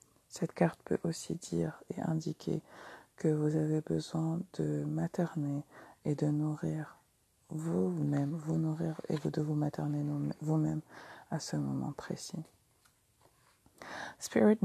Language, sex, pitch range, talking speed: English, female, 130-165 Hz, 125 wpm